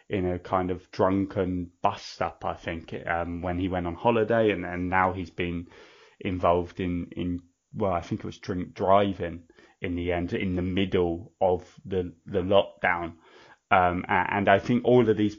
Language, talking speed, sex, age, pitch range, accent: English, 175 wpm, male, 20-39, 90-105 Hz, British